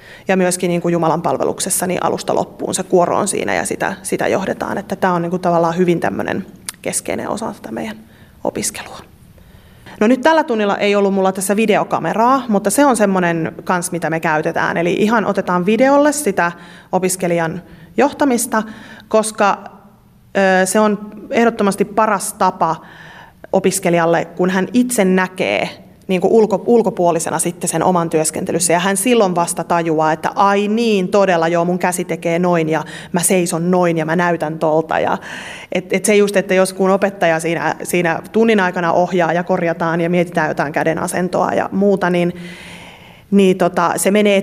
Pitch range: 170-200 Hz